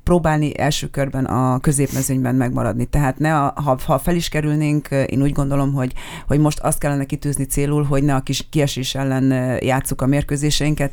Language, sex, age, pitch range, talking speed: Hungarian, female, 30-49, 130-145 Hz, 180 wpm